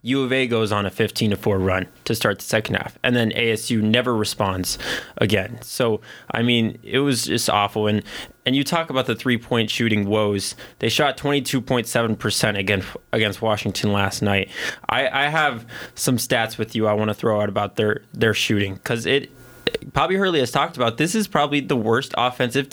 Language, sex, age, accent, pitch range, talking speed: English, male, 20-39, American, 110-140 Hz, 195 wpm